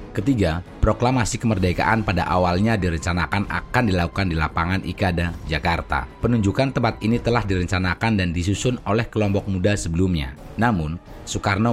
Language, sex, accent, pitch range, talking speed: Indonesian, male, native, 85-110 Hz, 130 wpm